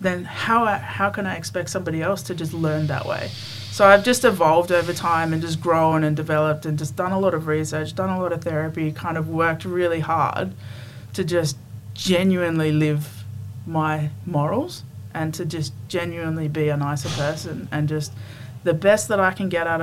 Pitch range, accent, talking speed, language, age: 130-165 Hz, Australian, 195 wpm, English, 20-39